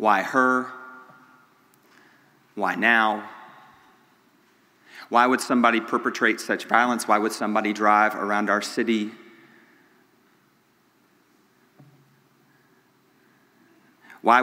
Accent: American